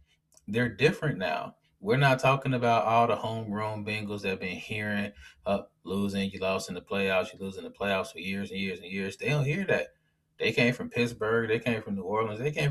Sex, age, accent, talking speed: male, 20-39, American, 230 wpm